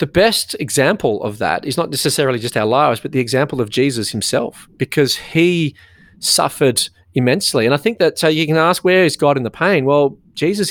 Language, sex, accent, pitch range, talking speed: English, male, Australian, 120-155 Hz, 205 wpm